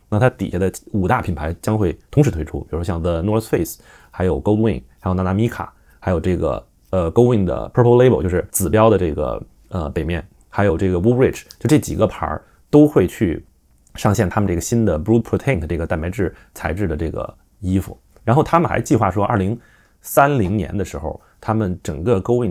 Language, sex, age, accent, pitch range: Chinese, male, 20-39, native, 85-115 Hz